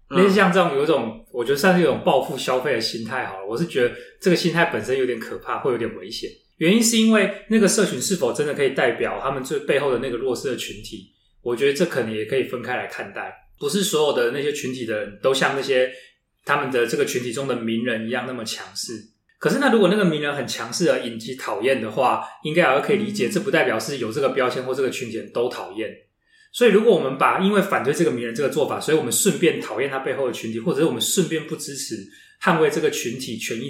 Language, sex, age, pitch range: Chinese, male, 20-39, 125-205 Hz